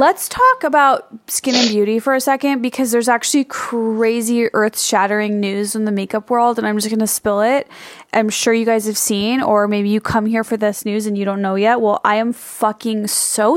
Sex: female